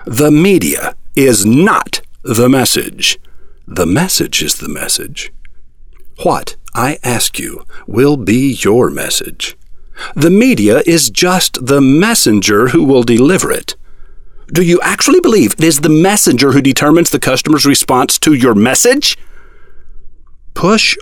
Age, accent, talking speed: 60-79, American, 130 wpm